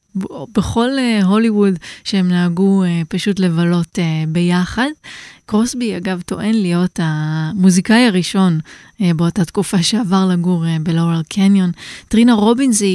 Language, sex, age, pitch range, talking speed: Hebrew, female, 20-39, 175-215 Hz, 120 wpm